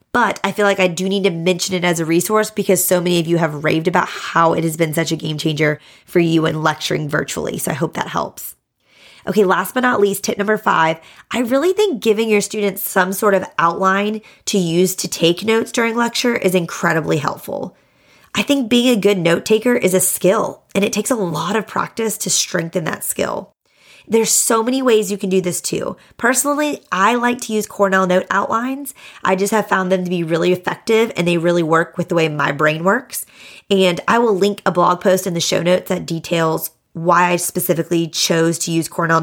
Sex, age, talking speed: female, 20-39, 220 wpm